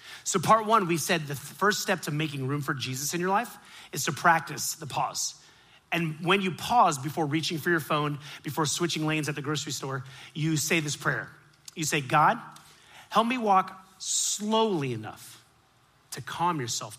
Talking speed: 185 wpm